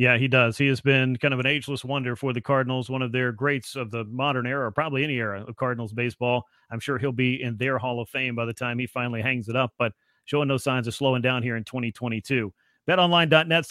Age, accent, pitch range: 40-59, American, 125-150 Hz